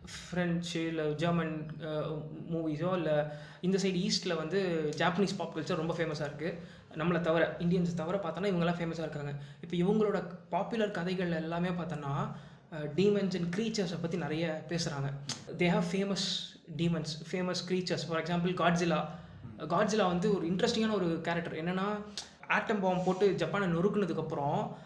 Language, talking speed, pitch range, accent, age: Tamil, 135 wpm, 160-195 Hz, native, 20-39